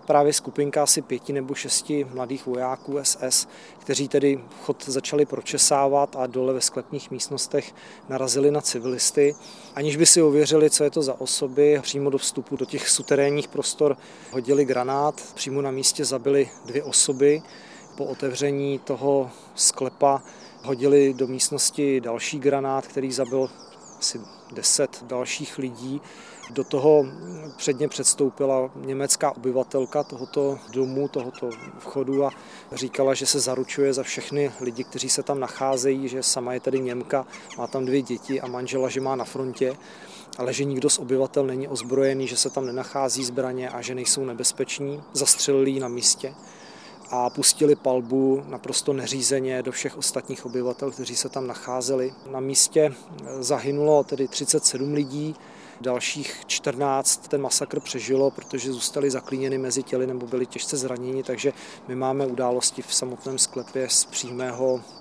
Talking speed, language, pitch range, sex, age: 145 wpm, Czech, 130-145 Hz, male, 40-59